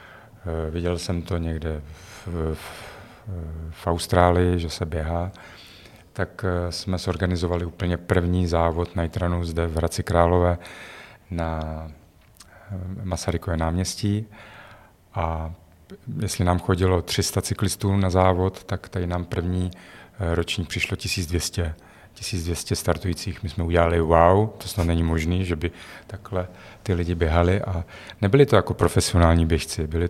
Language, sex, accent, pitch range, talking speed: Czech, male, native, 85-100 Hz, 125 wpm